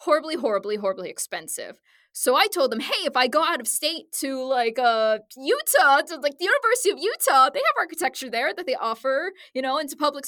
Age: 20-39